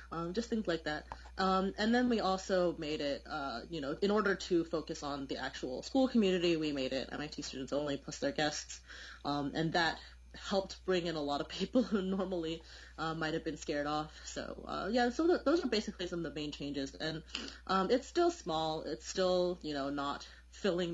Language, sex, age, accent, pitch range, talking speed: English, female, 20-39, American, 150-190 Hz, 210 wpm